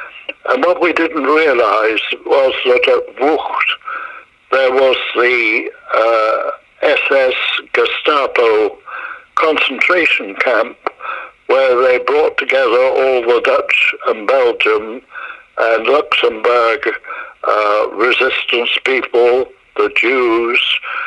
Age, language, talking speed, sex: 60-79, English, 90 wpm, male